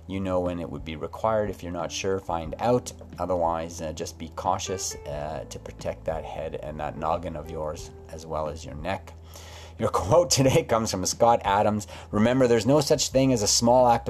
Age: 30-49